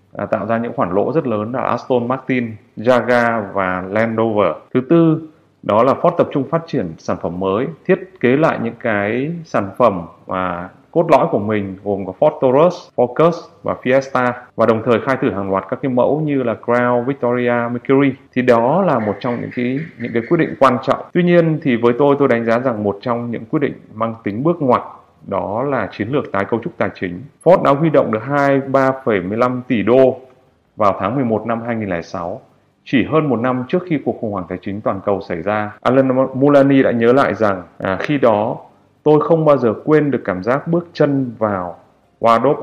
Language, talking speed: Vietnamese, 205 wpm